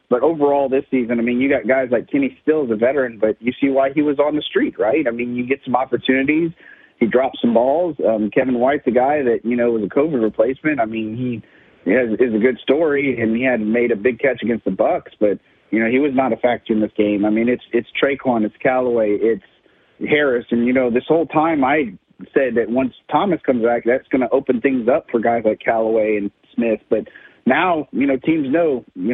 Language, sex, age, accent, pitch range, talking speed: English, male, 40-59, American, 115-140 Hz, 245 wpm